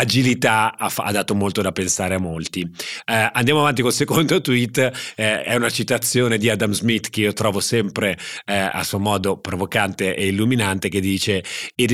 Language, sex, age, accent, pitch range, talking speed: Italian, male, 40-59, native, 100-120 Hz, 180 wpm